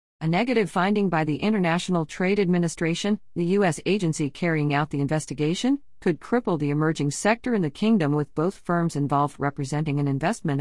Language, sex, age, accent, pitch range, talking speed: English, female, 50-69, American, 145-185 Hz, 170 wpm